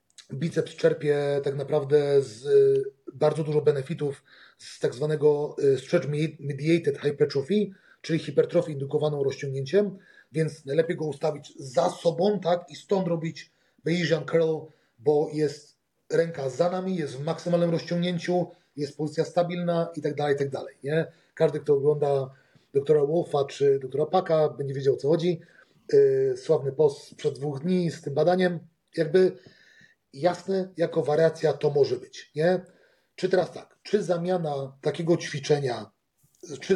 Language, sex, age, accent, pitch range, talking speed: Polish, male, 30-49, native, 150-180 Hz, 135 wpm